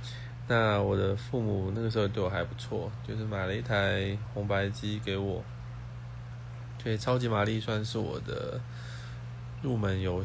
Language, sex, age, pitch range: Chinese, male, 20-39, 105-120 Hz